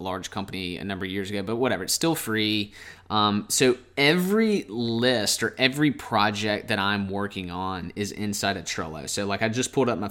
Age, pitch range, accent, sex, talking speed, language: 20-39, 100-135 Hz, American, male, 200 wpm, English